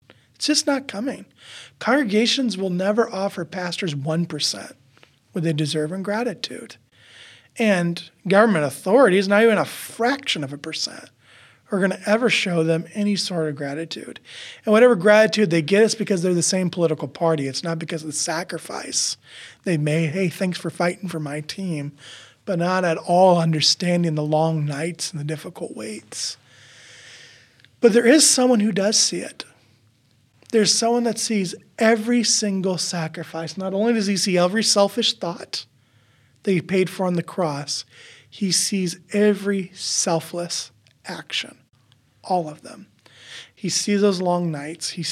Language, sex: English, male